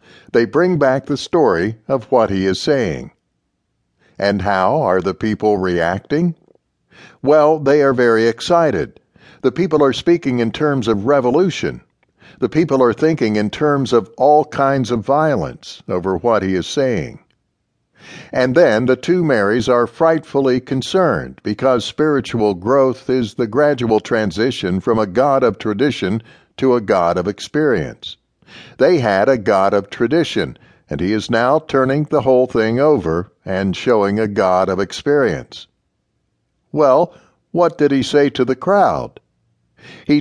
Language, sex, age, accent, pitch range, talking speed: English, male, 60-79, American, 105-145 Hz, 150 wpm